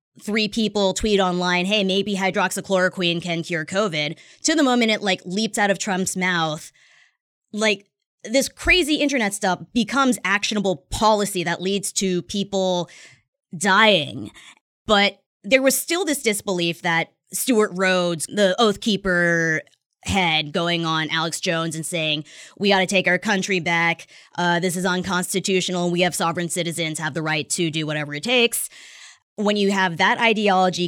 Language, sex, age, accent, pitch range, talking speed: English, female, 20-39, American, 170-210 Hz, 155 wpm